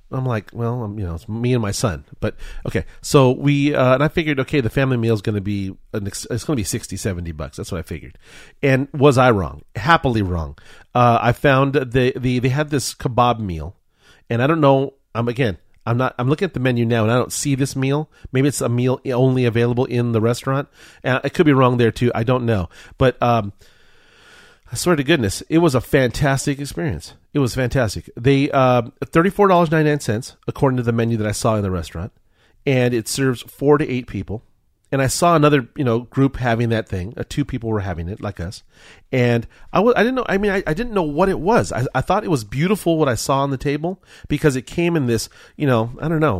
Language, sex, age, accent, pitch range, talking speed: English, male, 40-59, American, 110-145 Hz, 245 wpm